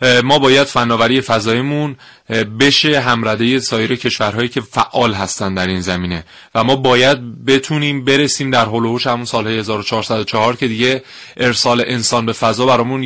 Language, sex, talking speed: Persian, male, 145 wpm